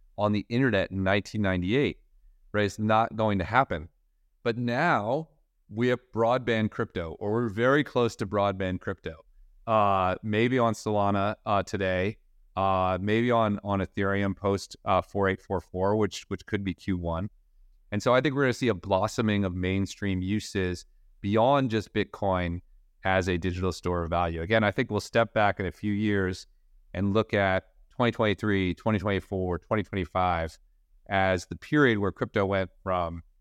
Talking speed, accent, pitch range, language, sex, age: 155 wpm, American, 90-105 Hz, English, male, 30-49